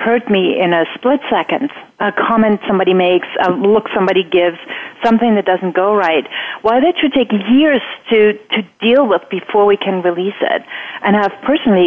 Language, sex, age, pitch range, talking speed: English, female, 40-59, 195-250 Hz, 180 wpm